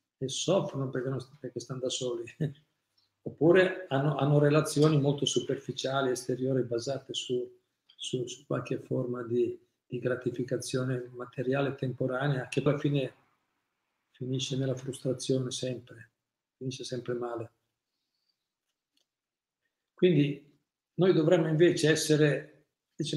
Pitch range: 125-145 Hz